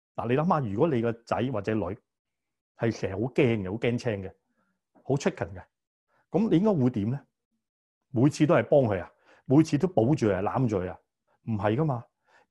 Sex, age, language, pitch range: male, 30-49, Chinese, 105-140 Hz